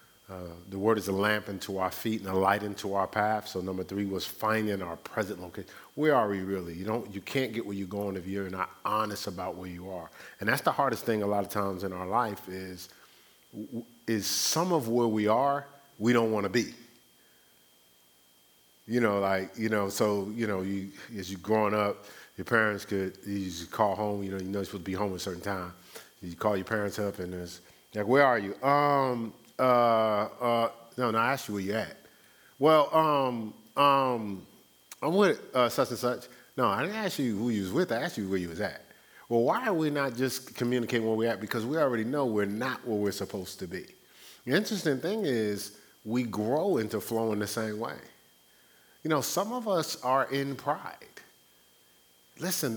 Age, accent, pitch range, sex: 40-59, American, 95-120 Hz, male